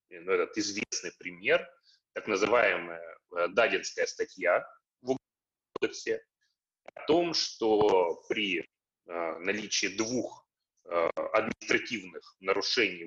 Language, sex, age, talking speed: Russian, male, 30-49, 90 wpm